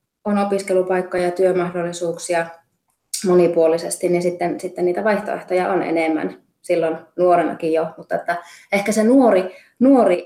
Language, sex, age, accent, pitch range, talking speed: Finnish, female, 20-39, native, 165-195 Hz, 125 wpm